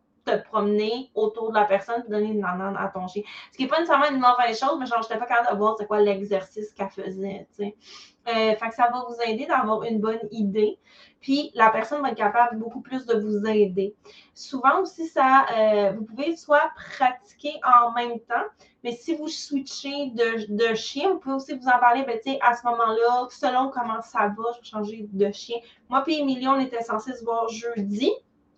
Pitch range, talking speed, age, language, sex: 215-265 Hz, 210 wpm, 20-39, French, female